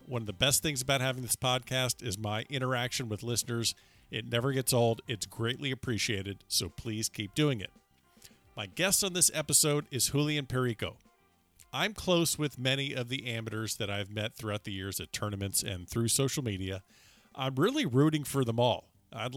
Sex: male